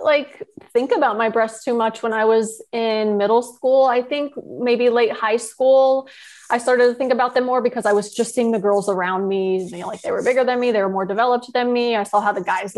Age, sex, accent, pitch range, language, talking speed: 20-39, female, American, 205-245 Hz, English, 255 wpm